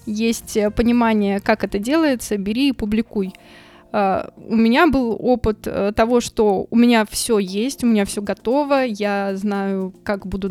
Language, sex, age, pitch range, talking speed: Russian, female, 20-39, 210-235 Hz, 150 wpm